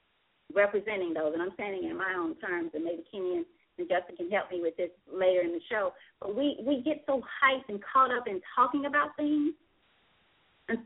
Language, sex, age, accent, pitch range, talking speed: English, female, 40-59, American, 215-290 Hz, 210 wpm